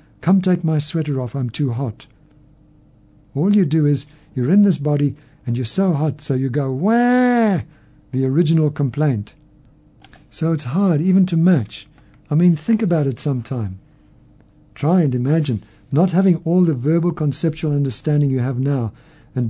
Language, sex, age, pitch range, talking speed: English, male, 50-69, 130-160 Hz, 165 wpm